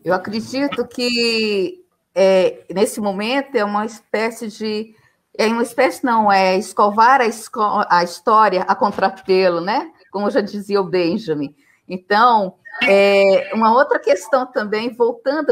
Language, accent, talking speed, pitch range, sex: Portuguese, Brazilian, 135 wpm, 205-270 Hz, female